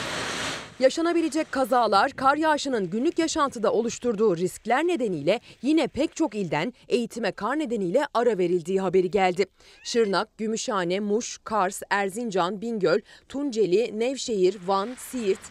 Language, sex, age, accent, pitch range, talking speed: Turkish, female, 30-49, native, 200-280 Hz, 115 wpm